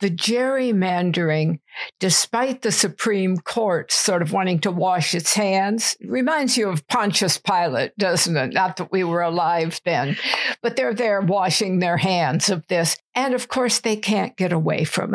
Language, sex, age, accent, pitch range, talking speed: English, female, 60-79, American, 185-230 Hz, 165 wpm